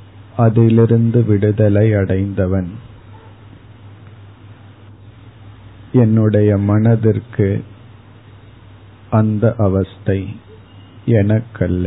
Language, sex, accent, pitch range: Tamil, male, native, 100-110 Hz